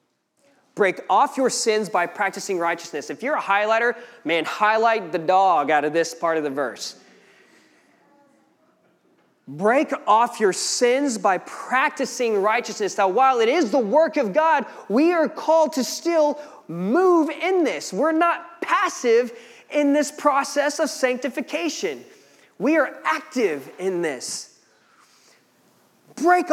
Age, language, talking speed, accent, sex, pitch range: 20-39, English, 135 wpm, American, male, 195-290 Hz